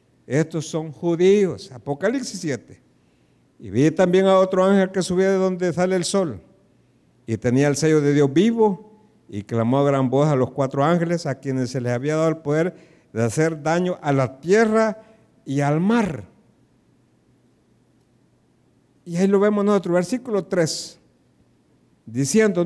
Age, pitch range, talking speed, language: 60-79, 130-190 Hz, 155 wpm, Spanish